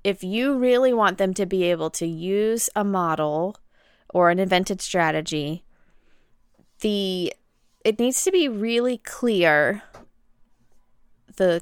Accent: American